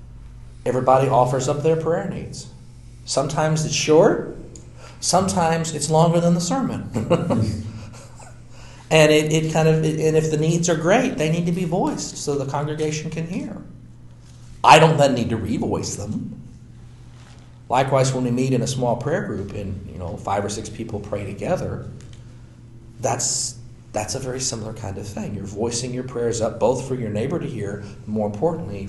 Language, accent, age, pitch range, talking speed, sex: English, American, 40-59, 105-140 Hz, 170 wpm, male